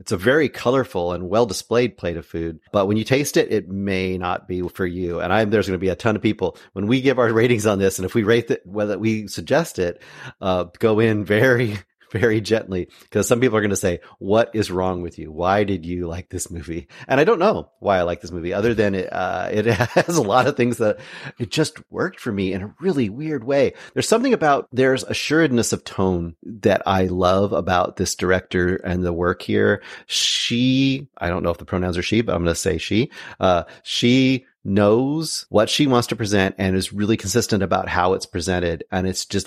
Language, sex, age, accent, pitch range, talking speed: English, male, 40-59, American, 95-120 Hz, 230 wpm